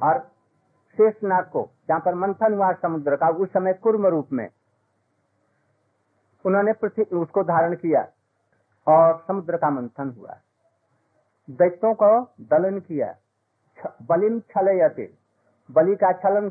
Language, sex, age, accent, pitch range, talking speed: Hindi, male, 60-79, native, 150-200 Hz, 105 wpm